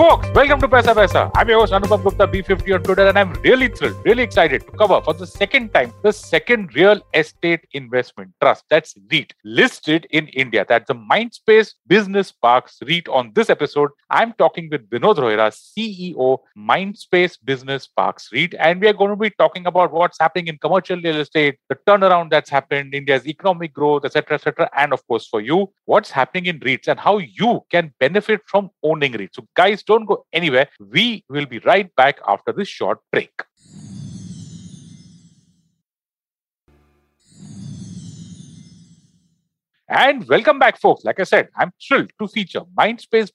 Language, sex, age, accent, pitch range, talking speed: English, male, 40-59, Indian, 145-200 Hz, 165 wpm